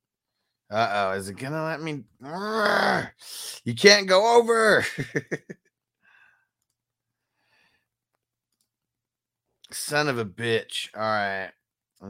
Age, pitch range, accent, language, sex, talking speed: 30-49, 110-135 Hz, American, English, male, 90 wpm